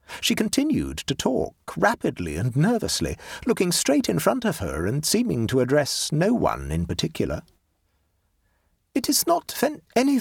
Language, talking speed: English, 155 wpm